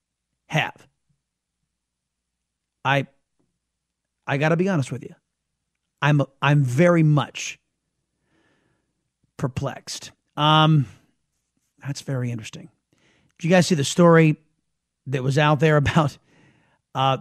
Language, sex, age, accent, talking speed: English, male, 40-59, American, 100 wpm